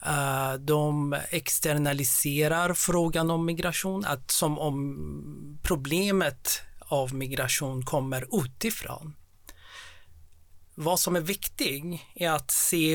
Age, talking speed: 40-59, 95 wpm